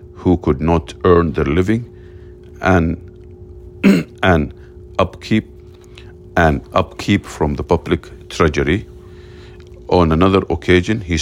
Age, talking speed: 50-69, 100 wpm